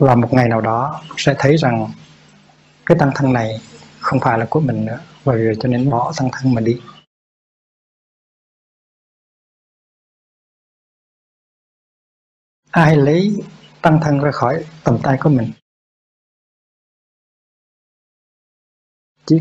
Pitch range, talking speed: 120-150 Hz, 120 wpm